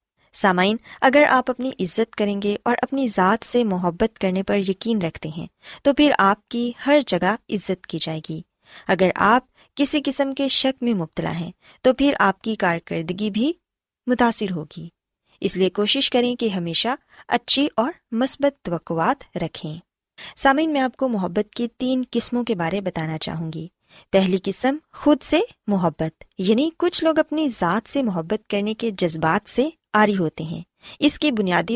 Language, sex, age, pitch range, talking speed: Urdu, female, 20-39, 180-250 Hz, 170 wpm